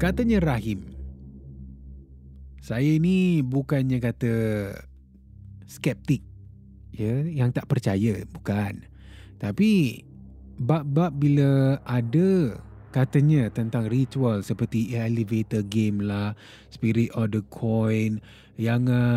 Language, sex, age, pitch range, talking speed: Malay, male, 30-49, 105-145 Hz, 90 wpm